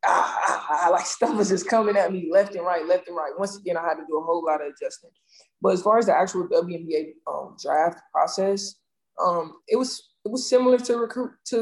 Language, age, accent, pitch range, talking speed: English, 20-39, American, 165-255 Hz, 245 wpm